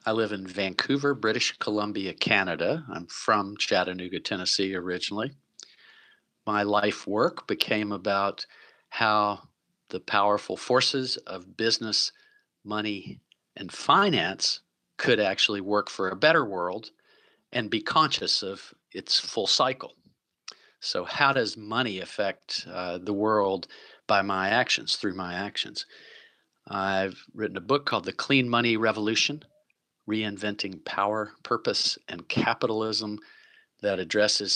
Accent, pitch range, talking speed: American, 100-130 Hz, 120 wpm